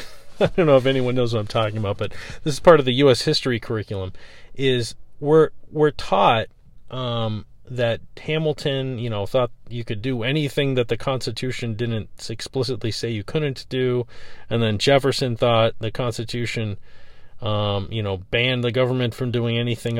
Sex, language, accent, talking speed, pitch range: male, English, American, 170 wpm, 100-130 Hz